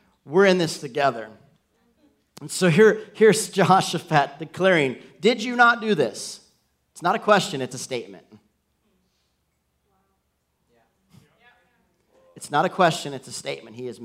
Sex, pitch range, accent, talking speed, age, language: male, 155-205 Hz, American, 130 wpm, 40-59, English